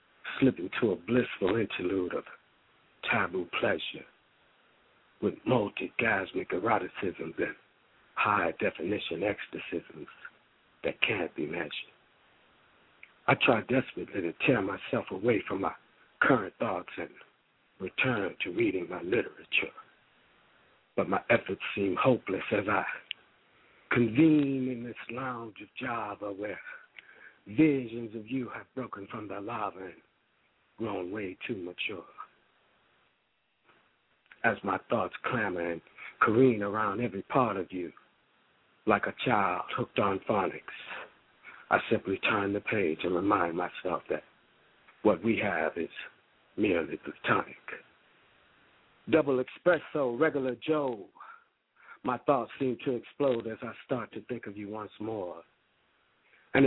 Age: 60-79